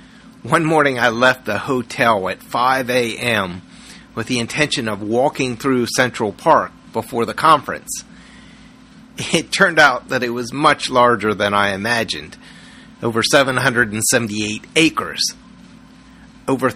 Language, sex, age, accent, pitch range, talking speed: English, male, 40-59, American, 115-145 Hz, 125 wpm